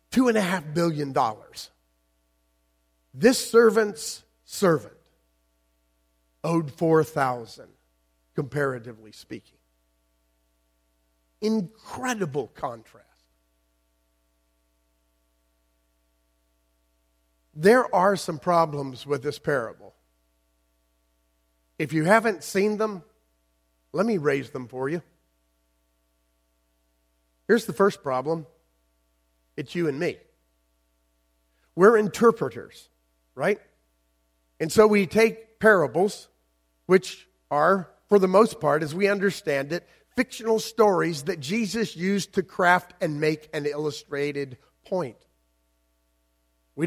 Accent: American